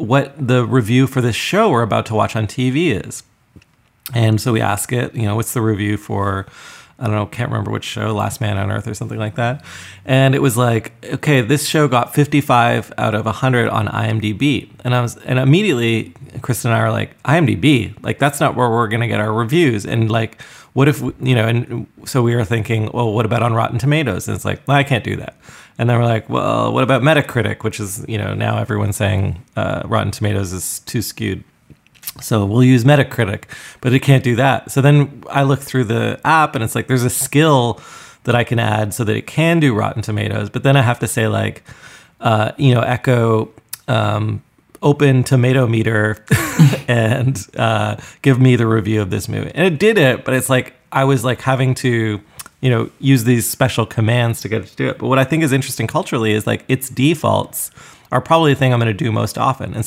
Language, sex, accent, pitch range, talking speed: English, male, American, 110-135 Hz, 220 wpm